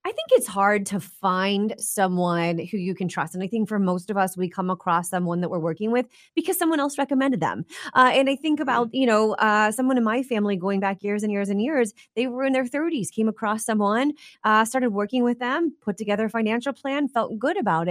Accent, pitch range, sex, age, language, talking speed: American, 185-255 Hz, female, 30-49, English, 240 wpm